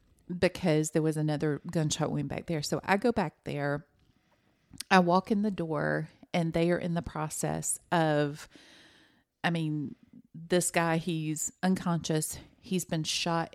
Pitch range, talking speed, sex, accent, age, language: 150-175 Hz, 150 wpm, female, American, 40-59, English